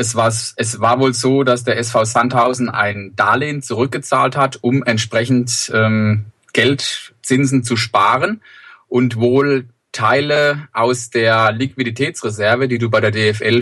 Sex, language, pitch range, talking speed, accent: male, German, 115-130 Hz, 130 wpm, German